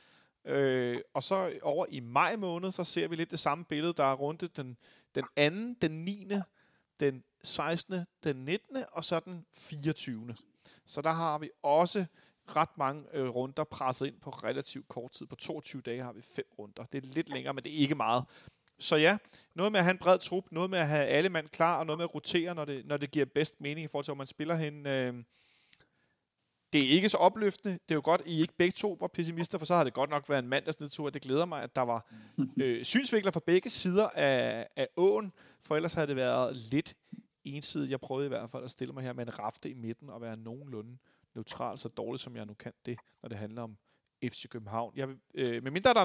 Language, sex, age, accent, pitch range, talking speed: Danish, male, 40-59, native, 130-175 Hz, 230 wpm